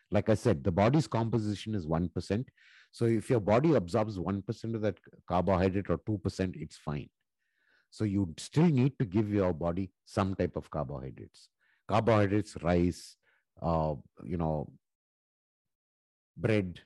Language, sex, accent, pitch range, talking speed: English, male, Indian, 85-110 Hz, 140 wpm